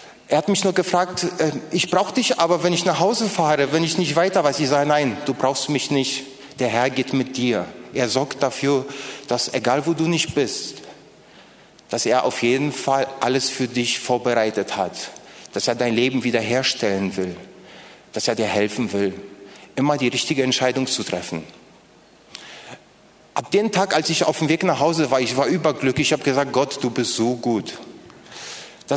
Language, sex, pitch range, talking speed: German, male, 130-180 Hz, 185 wpm